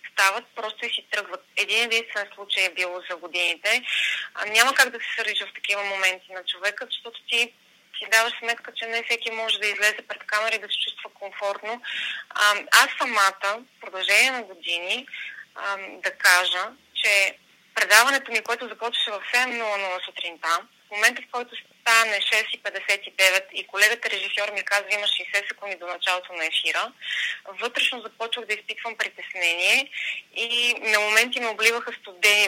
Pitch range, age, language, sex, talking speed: 195-230 Hz, 20-39, Bulgarian, female, 155 wpm